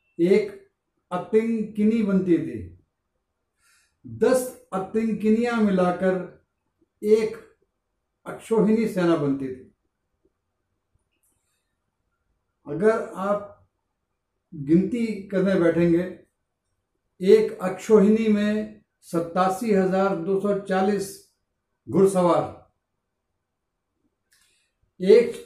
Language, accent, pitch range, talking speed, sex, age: Hindi, native, 120-200 Hz, 65 wpm, male, 60-79